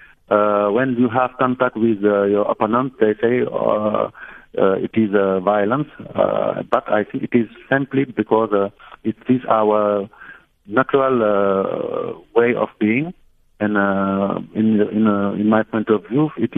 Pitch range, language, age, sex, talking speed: 100-115 Hz, English, 50-69, male, 165 wpm